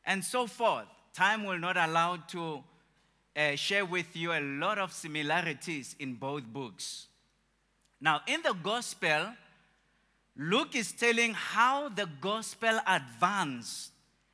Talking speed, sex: 125 wpm, male